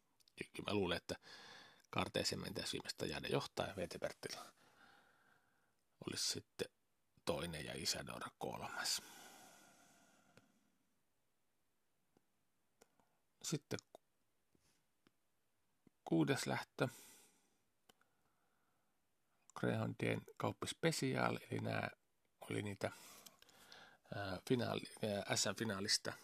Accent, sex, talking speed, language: native, male, 60 wpm, Finnish